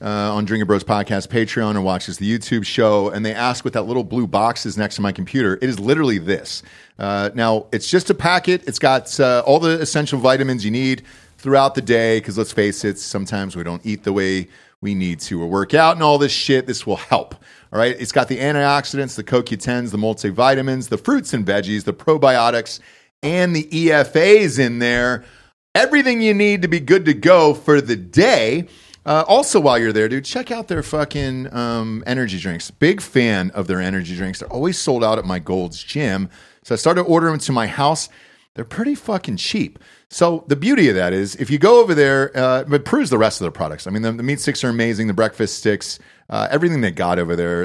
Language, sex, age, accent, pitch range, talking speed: English, male, 30-49, American, 100-145 Hz, 220 wpm